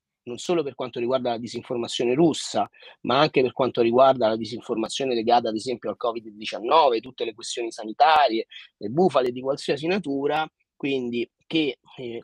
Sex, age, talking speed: male, 30-49, 155 wpm